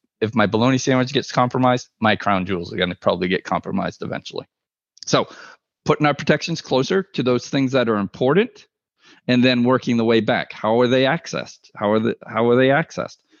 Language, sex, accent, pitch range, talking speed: English, male, American, 105-130 Hz, 195 wpm